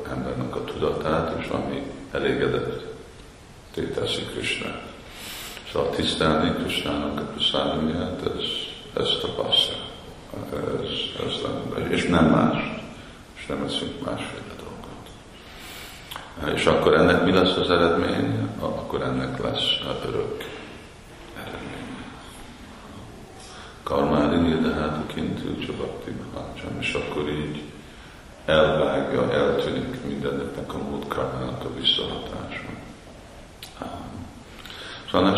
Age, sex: 50-69, male